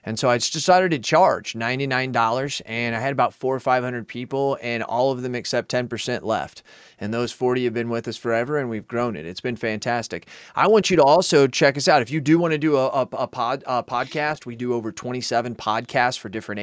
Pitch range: 110-140 Hz